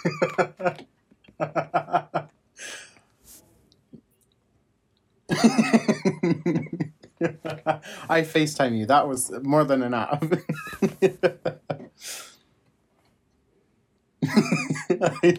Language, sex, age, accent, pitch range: English, male, 30-49, American, 135-175 Hz